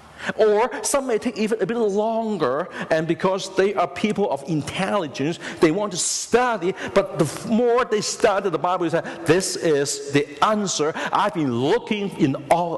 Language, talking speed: English, 175 wpm